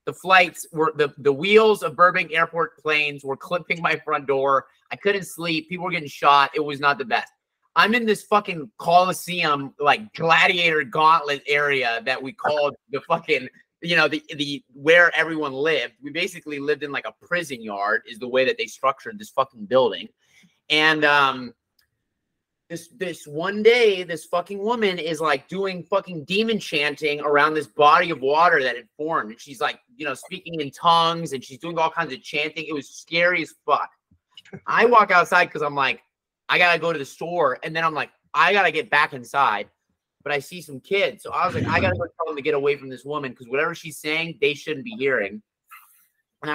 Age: 30-49